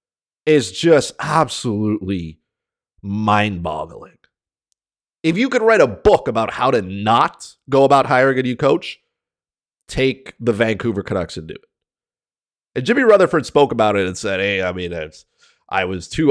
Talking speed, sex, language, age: 150 wpm, male, English, 30-49